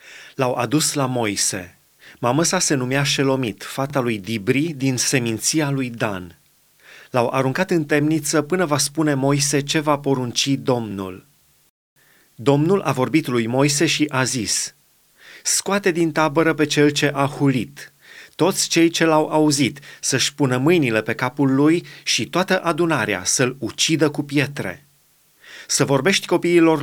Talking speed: 145 wpm